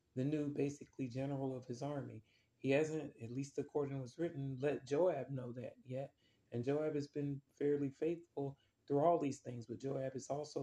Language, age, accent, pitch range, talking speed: English, 30-49, American, 120-140 Hz, 190 wpm